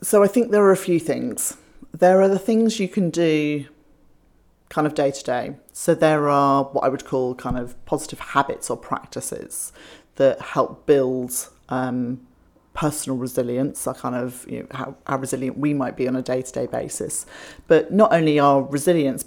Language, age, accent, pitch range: English, 30-49, British, 135-155 Hz